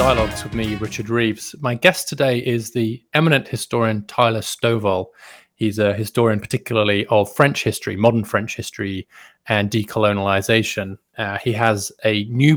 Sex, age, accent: male, 30-49, British